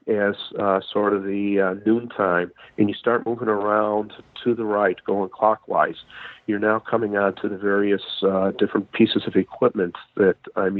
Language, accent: English, American